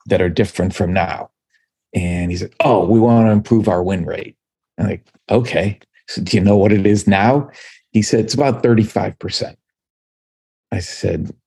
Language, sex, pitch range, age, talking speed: English, male, 90-110 Hz, 50-69, 180 wpm